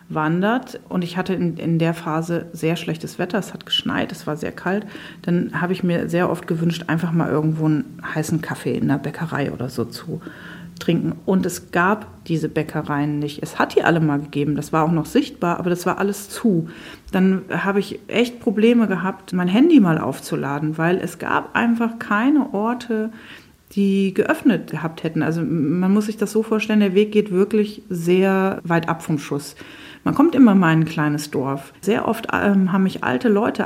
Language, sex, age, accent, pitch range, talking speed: German, female, 40-59, German, 165-210 Hz, 200 wpm